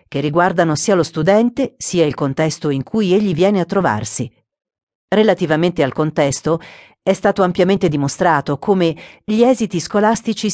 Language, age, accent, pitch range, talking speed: Italian, 40-59, native, 145-200 Hz, 140 wpm